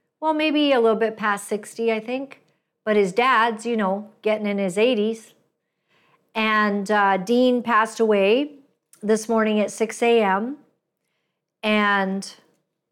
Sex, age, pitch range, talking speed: female, 50-69, 195-230 Hz, 135 wpm